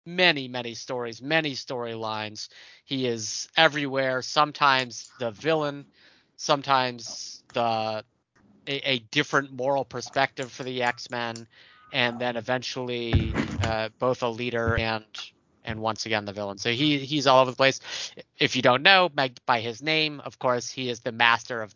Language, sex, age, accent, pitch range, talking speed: English, male, 30-49, American, 115-135 Hz, 155 wpm